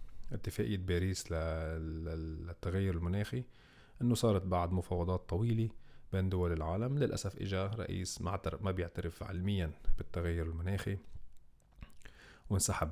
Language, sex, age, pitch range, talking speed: Arabic, male, 40-59, 85-105 Hz, 100 wpm